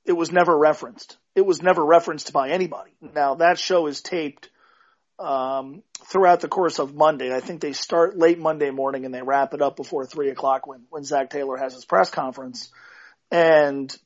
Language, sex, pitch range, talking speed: English, male, 140-185 Hz, 190 wpm